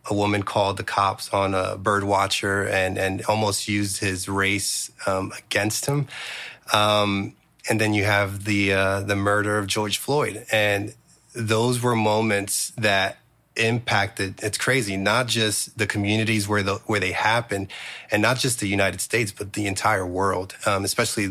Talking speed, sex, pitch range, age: 165 wpm, male, 100-110 Hz, 30-49